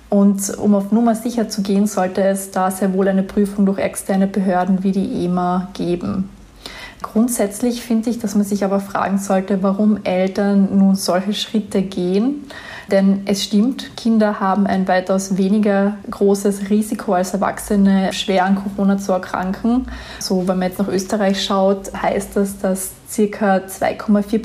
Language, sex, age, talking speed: German, female, 20-39, 160 wpm